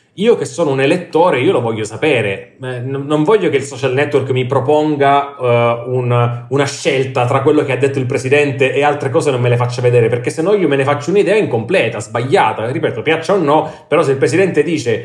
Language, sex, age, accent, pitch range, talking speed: Italian, male, 30-49, native, 120-150 Hz, 210 wpm